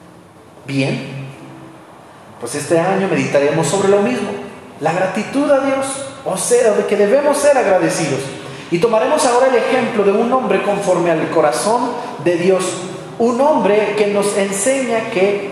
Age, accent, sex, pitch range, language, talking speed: 30-49, Mexican, male, 155-210 Hz, Spanish, 145 wpm